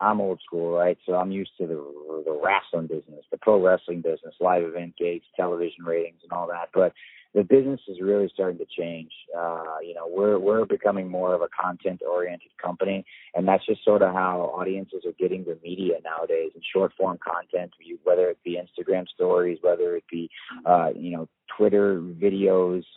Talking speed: 190 wpm